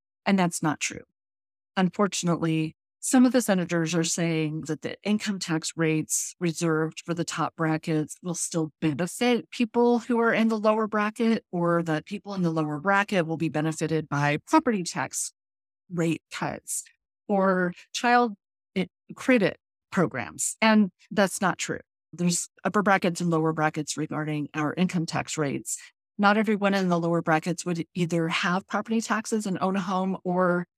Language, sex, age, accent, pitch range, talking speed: English, female, 40-59, American, 160-200 Hz, 160 wpm